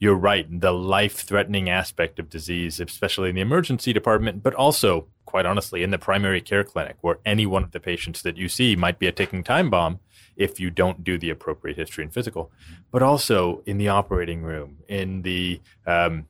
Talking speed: 200 wpm